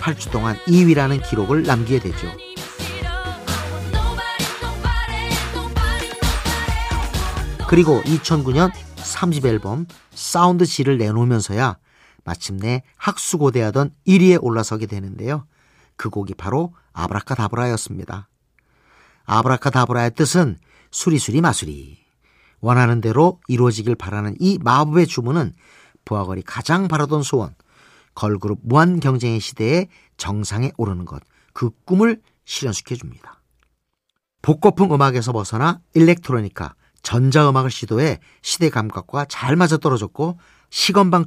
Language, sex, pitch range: Korean, male, 105-160 Hz